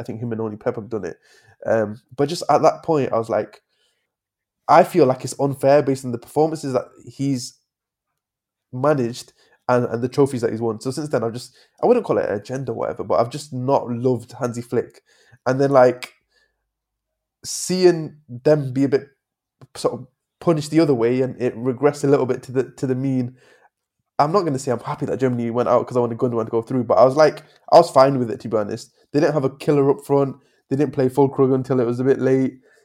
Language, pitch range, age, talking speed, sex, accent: English, 120-140 Hz, 20-39, 245 wpm, male, British